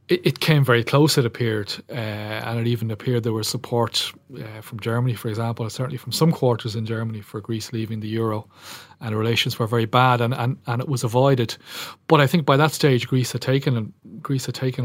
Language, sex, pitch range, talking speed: English, male, 115-125 Hz, 220 wpm